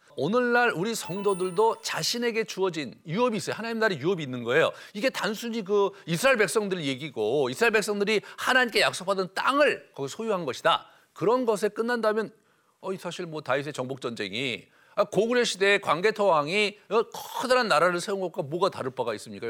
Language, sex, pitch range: Korean, male, 175-230 Hz